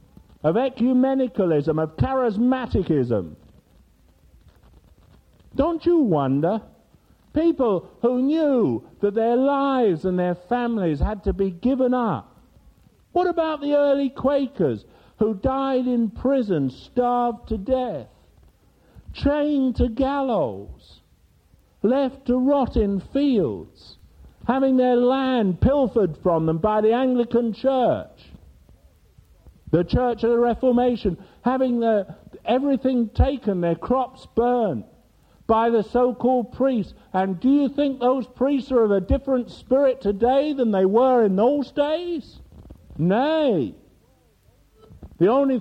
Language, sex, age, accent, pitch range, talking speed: English, male, 50-69, British, 165-265 Hz, 115 wpm